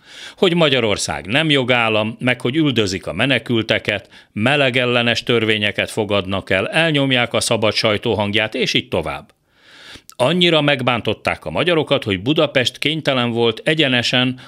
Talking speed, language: 125 wpm, Hungarian